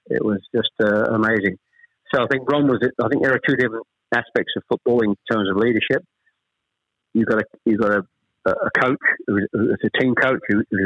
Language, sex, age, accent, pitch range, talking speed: English, male, 50-69, British, 105-115 Hz, 220 wpm